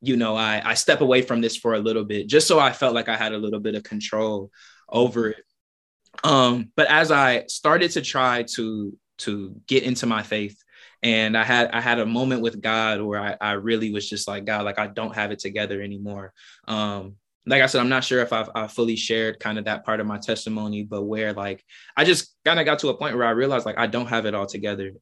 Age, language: 20-39, English